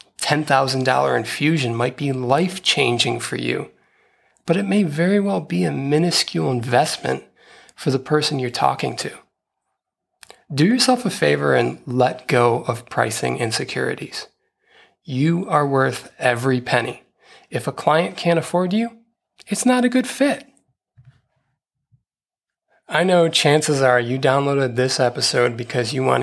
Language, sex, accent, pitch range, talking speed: English, male, American, 125-165 Hz, 135 wpm